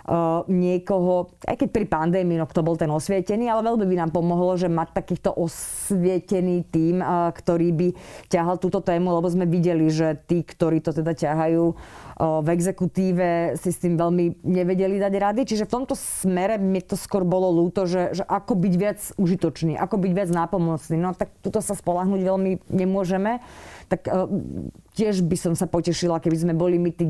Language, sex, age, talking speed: Slovak, female, 30-49, 175 wpm